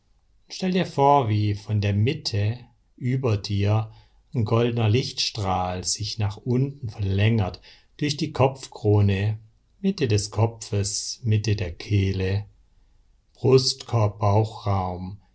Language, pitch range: German, 100-115 Hz